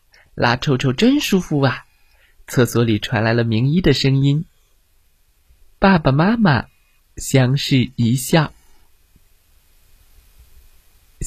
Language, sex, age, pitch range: Chinese, male, 20-39, 90-145 Hz